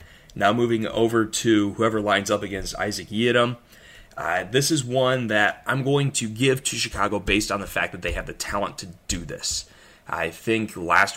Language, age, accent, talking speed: English, 20-39, American, 195 wpm